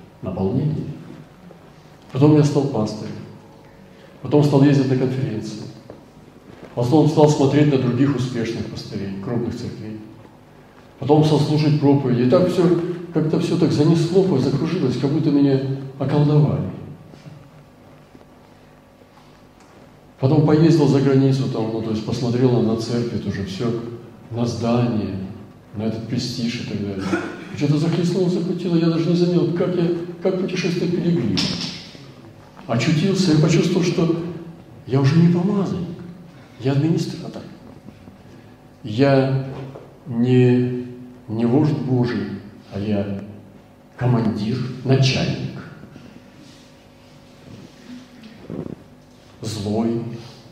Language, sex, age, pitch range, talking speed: Russian, male, 40-59, 115-165 Hz, 105 wpm